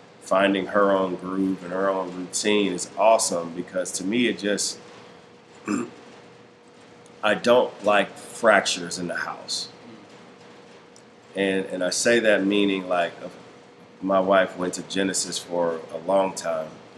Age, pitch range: 30-49, 90-100 Hz